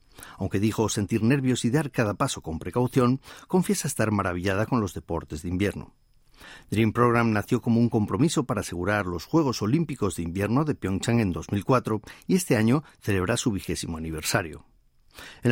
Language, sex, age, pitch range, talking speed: Spanish, male, 50-69, 95-130 Hz, 165 wpm